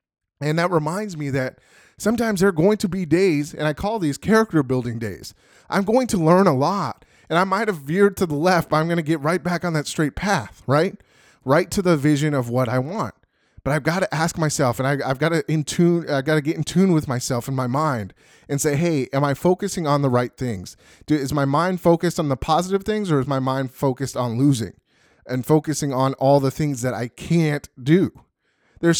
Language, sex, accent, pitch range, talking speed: English, male, American, 140-195 Hz, 225 wpm